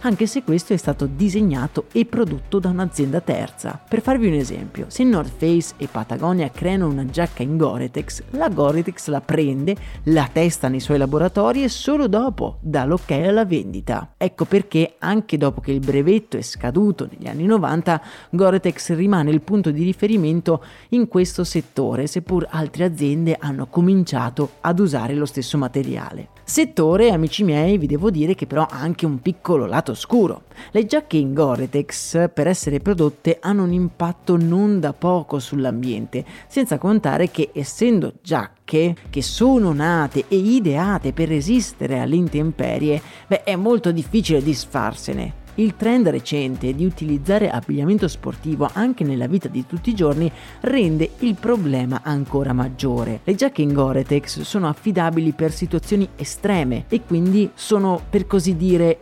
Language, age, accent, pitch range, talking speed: Italian, 30-49, native, 145-200 Hz, 155 wpm